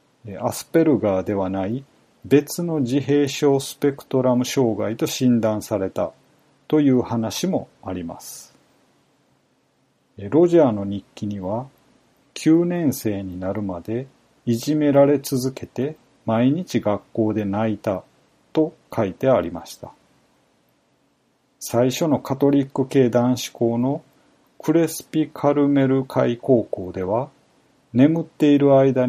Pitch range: 115-145 Hz